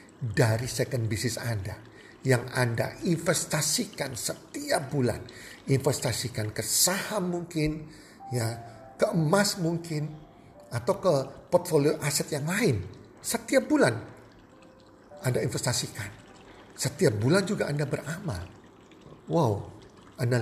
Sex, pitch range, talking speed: male, 110-155 Hz, 100 wpm